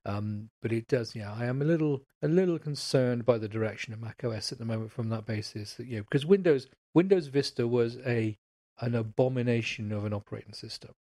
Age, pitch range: 40-59, 110-135 Hz